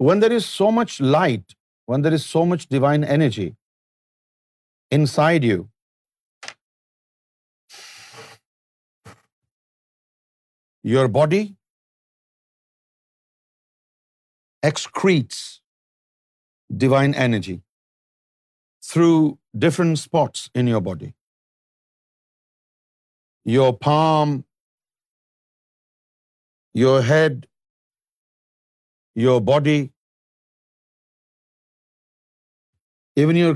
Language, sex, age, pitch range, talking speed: Urdu, male, 50-69, 115-160 Hz, 60 wpm